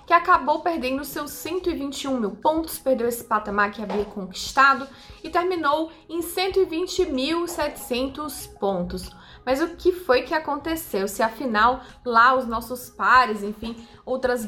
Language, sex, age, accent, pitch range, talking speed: Portuguese, female, 20-39, Brazilian, 230-310 Hz, 135 wpm